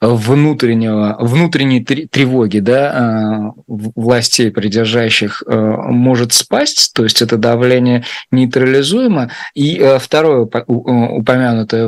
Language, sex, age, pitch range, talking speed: Russian, male, 20-39, 110-130 Hz, 70 wpm